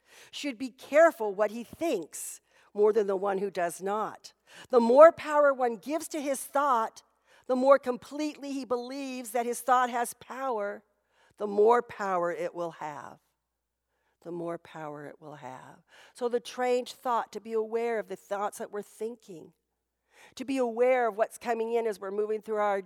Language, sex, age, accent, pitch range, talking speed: English, female, 50-69, American, 210-270 Hz, 180 wpm